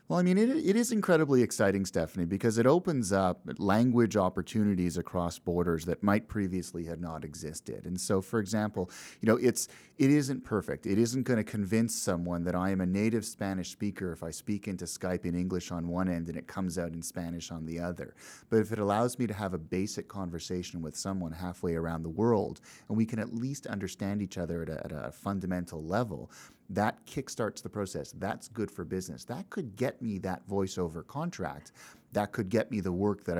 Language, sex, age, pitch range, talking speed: English, male, 30-49, 85-110 Hz, 210 wpm